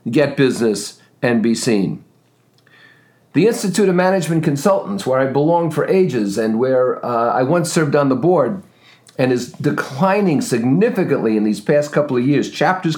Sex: male